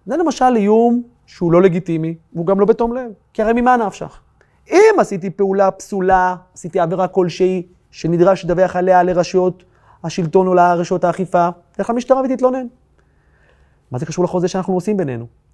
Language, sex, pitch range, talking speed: Hebrew, male, 165-225 Hz, 155 wpm